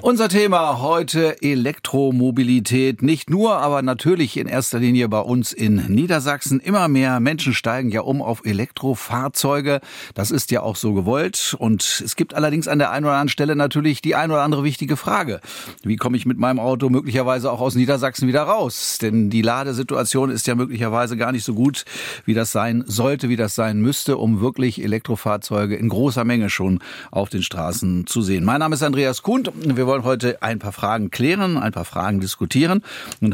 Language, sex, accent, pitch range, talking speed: German, male, German, 105-140 Hz, 190 wpm